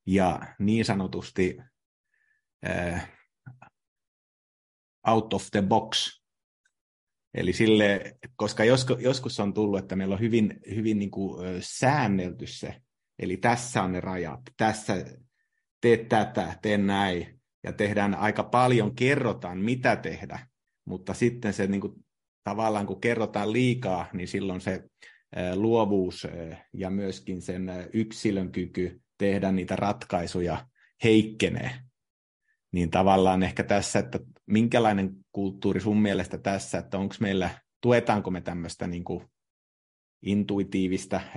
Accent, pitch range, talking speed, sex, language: native, 95-110 Hz, 115 wpm, male, Finnish